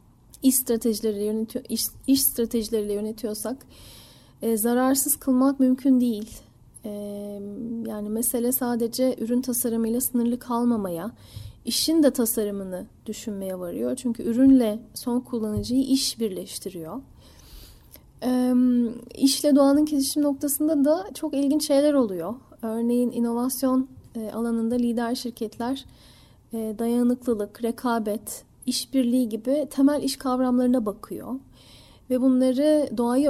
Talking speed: 105 wpm